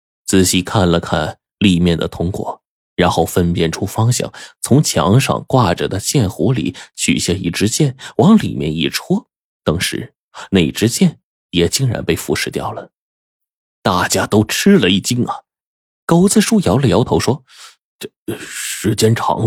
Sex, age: male, 30-49